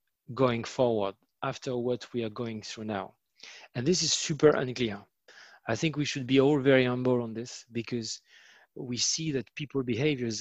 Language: French